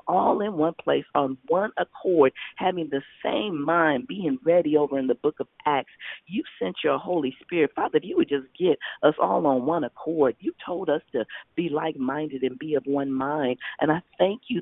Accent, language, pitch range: American, English, 155-190 Hz